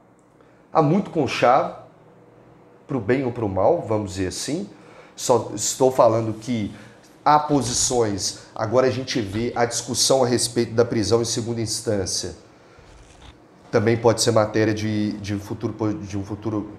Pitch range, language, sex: 115-170 Hz, Portuguese, male